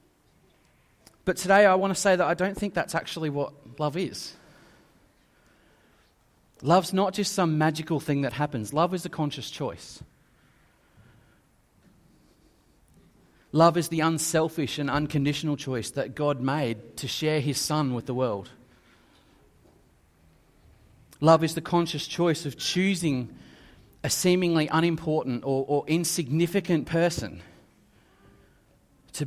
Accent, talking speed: Australian, 125 wpm